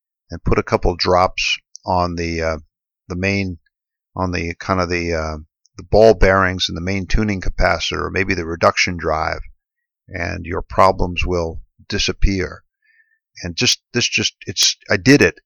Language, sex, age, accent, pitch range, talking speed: English, male, 50-69, American, 90-115 Hz, 165 wpm